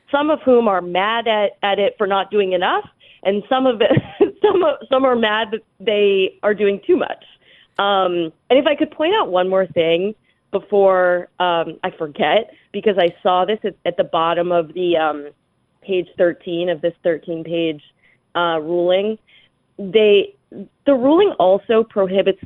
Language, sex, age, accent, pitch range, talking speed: English, female, 30-49, American, 175-210 Hz, 170 wpm